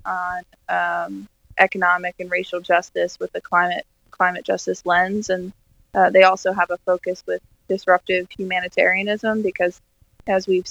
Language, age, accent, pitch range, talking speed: English, 20-39, American, 180-200 Hz, 140 wpm